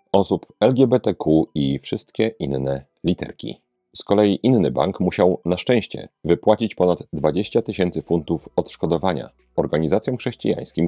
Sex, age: male, 40-59